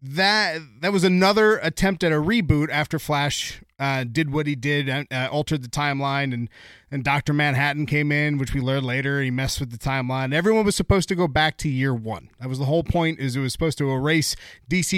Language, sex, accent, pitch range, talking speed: English, male, American, 140-180 Hz, 230 wpm